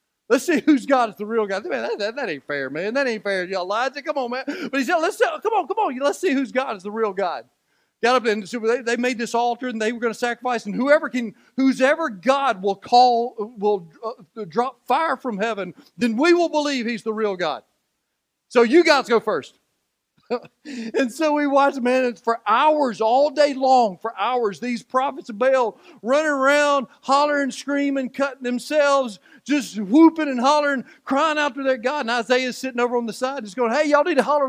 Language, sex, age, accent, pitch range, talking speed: English, male, 40-59, American, 205-285 Hz, 215 wpm